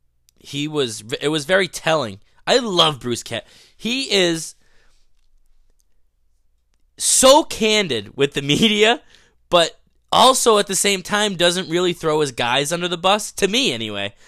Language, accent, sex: English, American, male